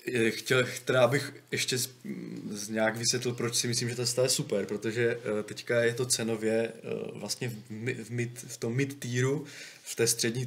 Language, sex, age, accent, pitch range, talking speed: Czech, male, 20-39, native, 110-120 Hz, 180 wpm